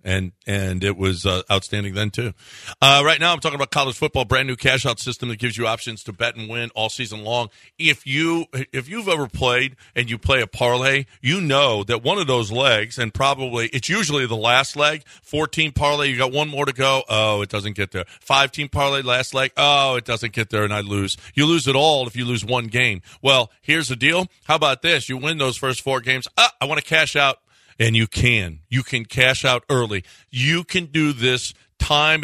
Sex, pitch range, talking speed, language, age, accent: male, 115-145 Hz, 245 wpm, English, 40-59, American